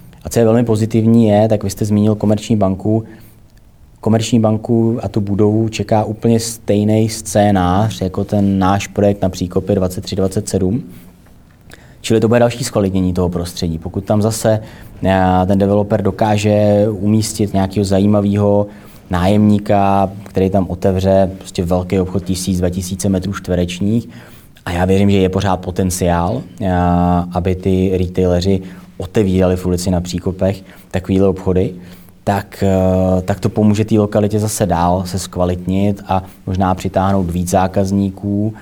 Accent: native